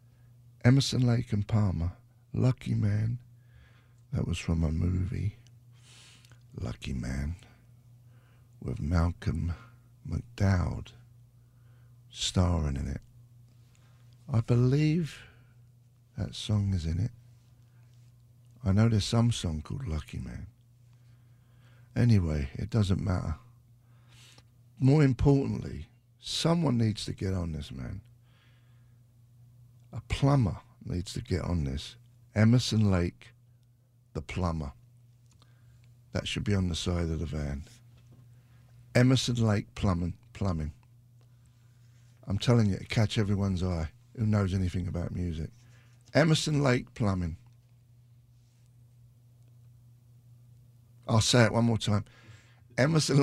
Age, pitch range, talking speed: 60-79, 105-120 Hz, 105 wpm